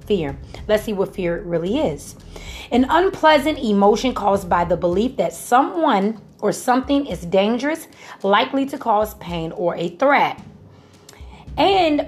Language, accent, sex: English, American, female